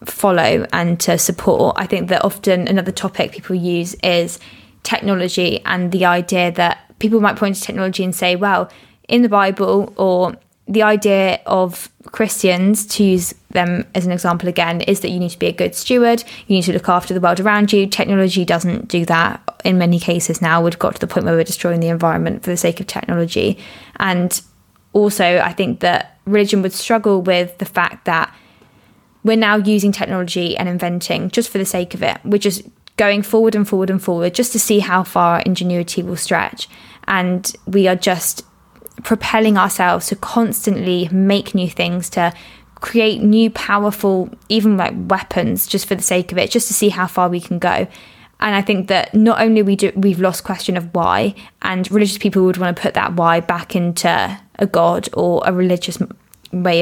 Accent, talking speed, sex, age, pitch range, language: British, 195 wpm, female, 20-39, 175-205 Hz, English